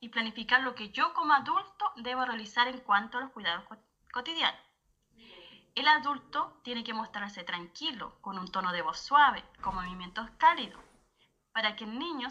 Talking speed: 165 wpm